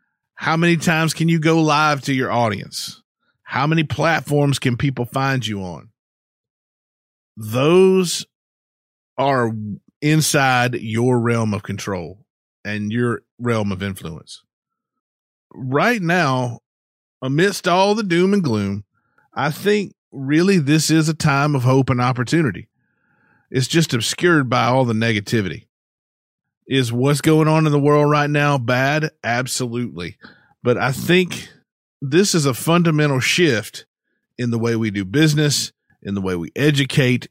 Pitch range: 115-155 Hz